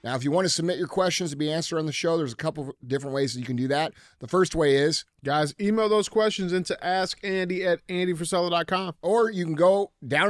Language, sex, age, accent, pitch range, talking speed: English, male, 30-49, American, 125-160 Hz, 245 wpm